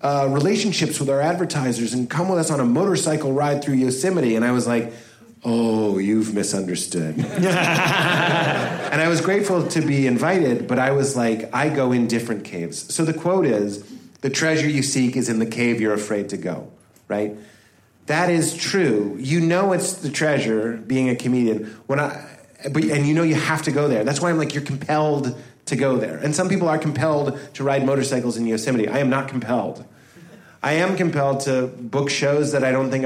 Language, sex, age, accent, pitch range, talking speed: English, male, 30-49, American, 120-155 Hz, 200 wpm